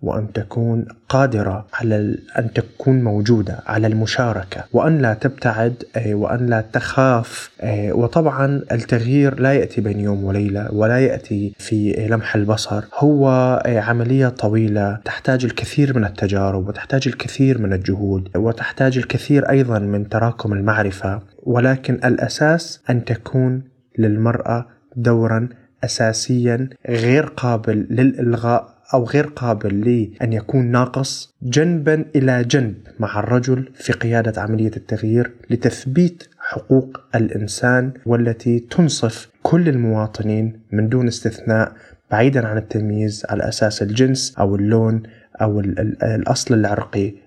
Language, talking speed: Arabic, 115 wpm